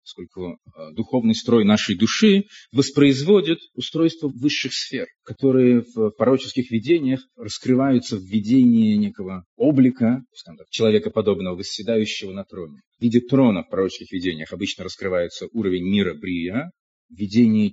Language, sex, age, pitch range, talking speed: Russian, male, 30-49, 105-160 Hz, 120 wpm